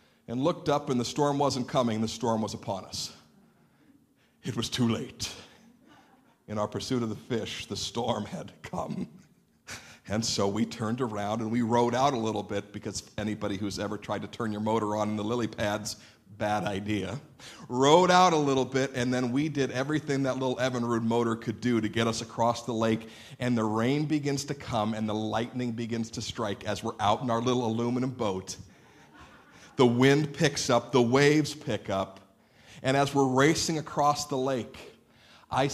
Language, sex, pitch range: English, male, 105-130 Hz